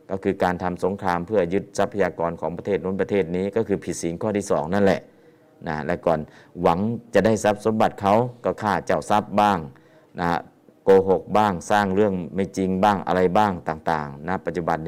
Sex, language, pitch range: male, Thai, 85-100 Hz